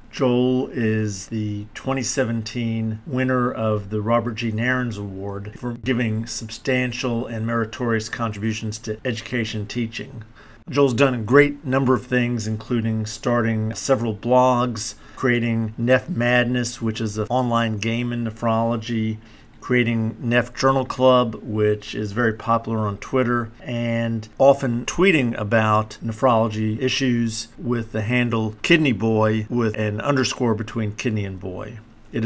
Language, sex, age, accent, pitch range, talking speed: English, male, 50-69, American, 115-135 Hz, 130 wpm